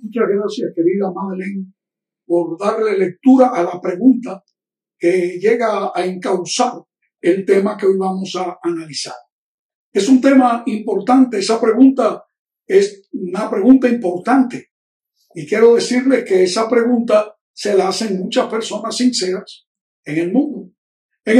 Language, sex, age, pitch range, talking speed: Spanish, male, 60-79, 195-255 Hz, 130 wpm